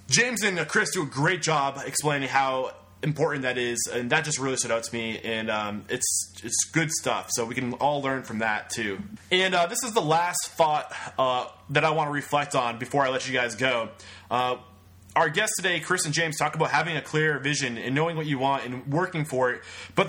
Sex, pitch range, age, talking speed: male, 125-175 Hz, 20-39, 235 wpm